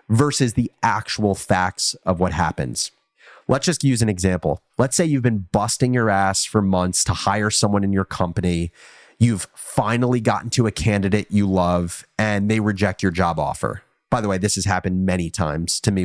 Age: 30-49